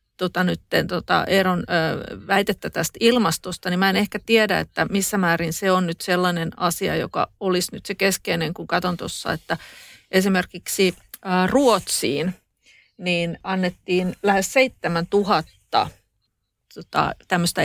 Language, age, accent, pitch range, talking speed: Finnish, 40-59, native, 165-185 Hz, 125 wpm